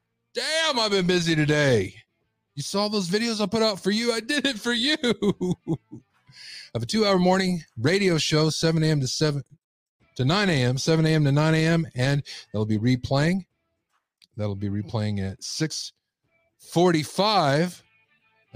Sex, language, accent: male, English, American